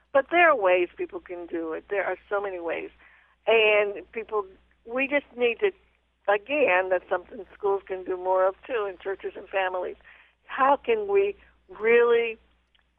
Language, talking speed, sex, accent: English, 165 wpm, female, American